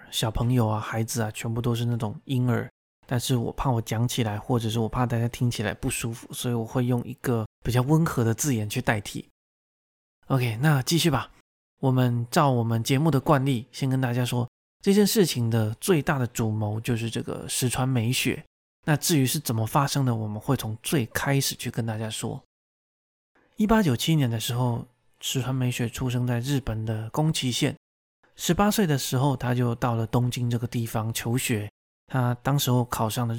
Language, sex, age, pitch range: Chinese, male, 20-39, 115-135 Hz